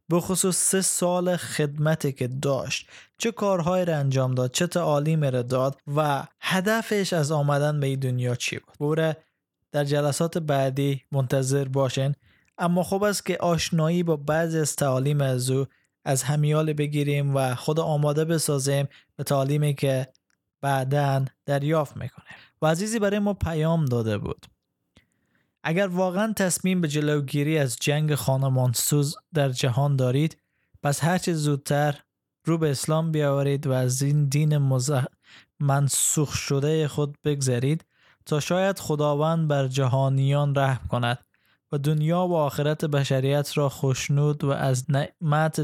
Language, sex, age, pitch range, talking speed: Persian, male, 20-39, 135-160 Hz, 140 wpm